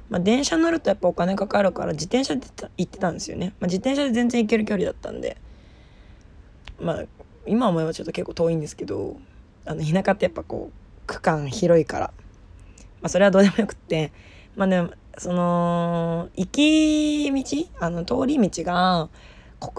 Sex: female